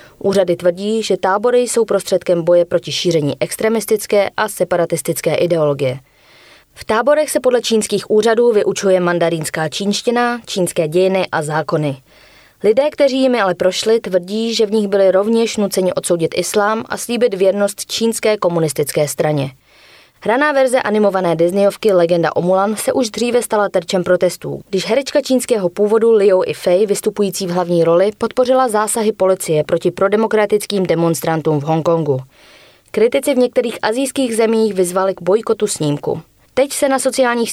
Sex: female